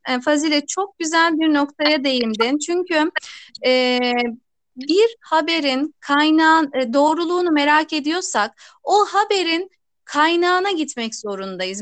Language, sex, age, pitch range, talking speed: Turkish, female, 30-49, 270-340 Hz, 95 wpm